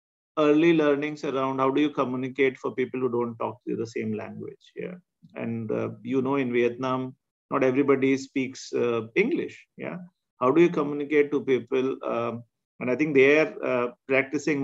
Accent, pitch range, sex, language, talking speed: Indian, 125-150 Hz, male, English, 170 wpm